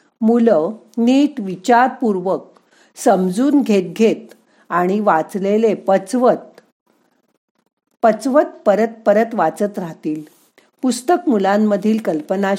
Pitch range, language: 185-240 Hz, Marathi